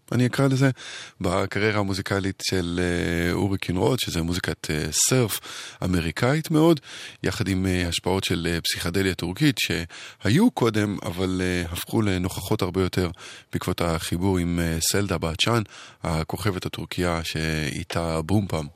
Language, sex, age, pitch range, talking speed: Hebrew, male, 20-39, 85-110 Hz, 110 wpm